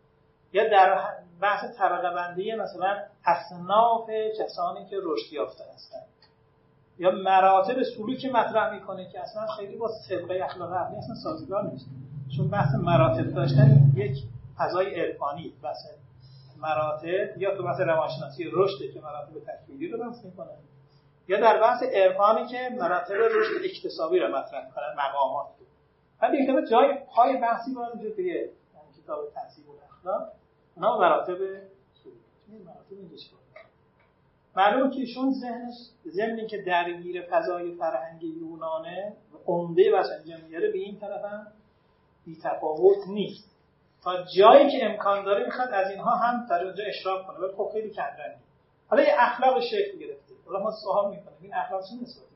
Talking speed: 145 wpm